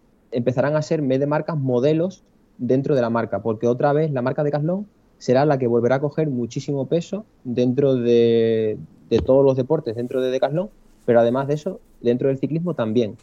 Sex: male